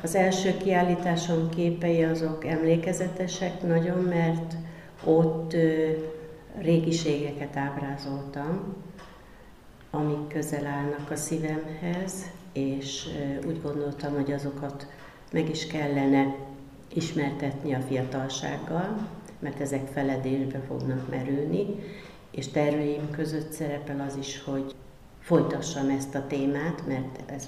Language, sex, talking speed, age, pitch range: Hungarian, female, 100 wpm, 60-79, 135-165 Hz